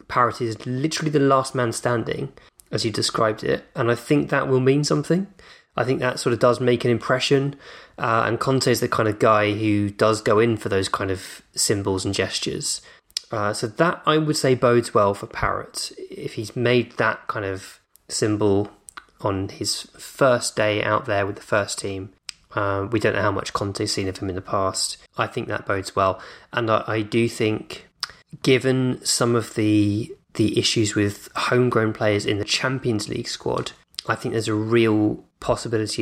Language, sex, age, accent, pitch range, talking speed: English, male, 20-39, British, 100-120 Hz, 195 wpm